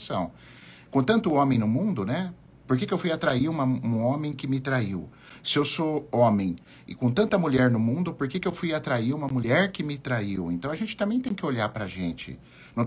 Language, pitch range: Portuguese, 100-145 Hz